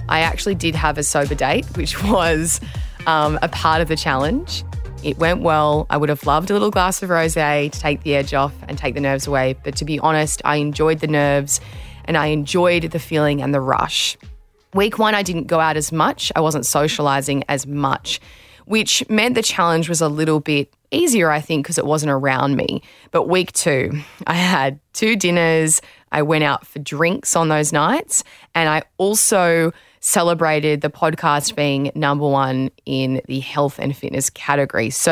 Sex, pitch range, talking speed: female, 145-180 Hz, 195 wpm